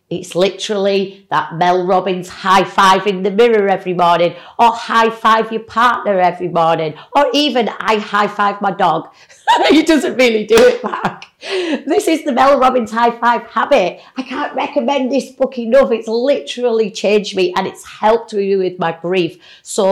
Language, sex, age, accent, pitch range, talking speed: English, female, 40-59, British, 185-250 Hz, 160 wpm